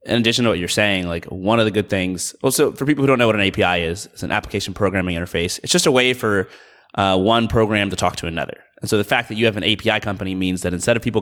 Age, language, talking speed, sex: 30-49, English, 290 wpm, male